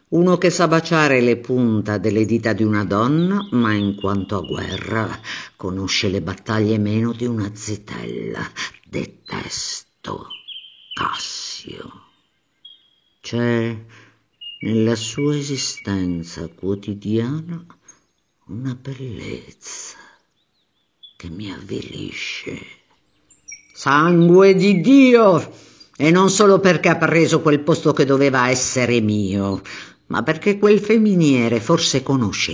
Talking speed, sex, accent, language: 105 wpm, female, native, Italian